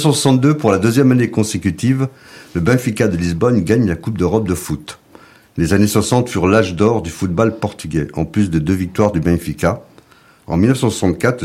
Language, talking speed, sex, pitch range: French, 185 wpm, male, 85-105 Hz